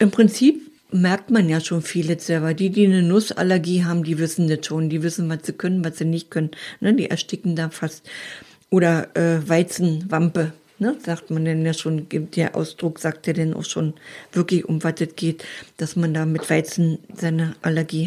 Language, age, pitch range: German, 50-69, 165-215 Hz